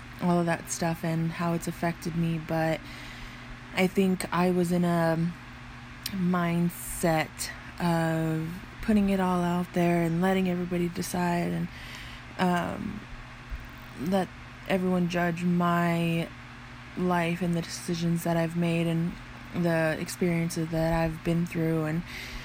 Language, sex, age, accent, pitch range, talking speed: English, female, 20-39, American, 150-180 Hz, 130 wpm